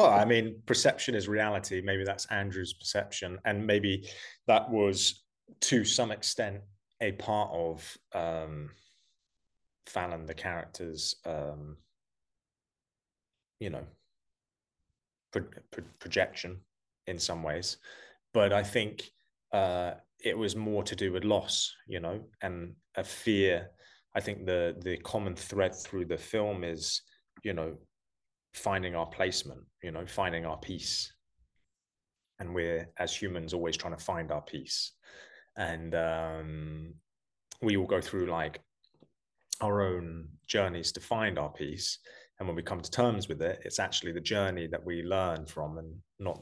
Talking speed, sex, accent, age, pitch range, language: 145 wpm, male, British, 20-39, 80-100 Hz, English